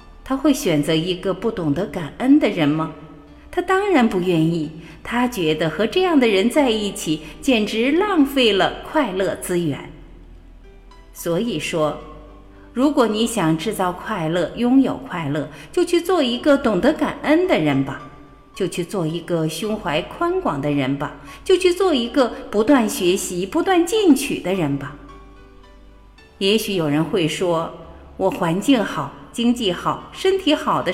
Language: Chinese